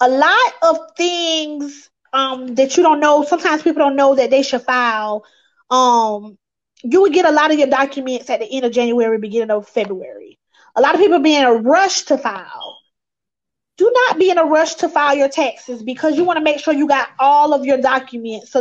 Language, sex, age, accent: English, female, 20-39, American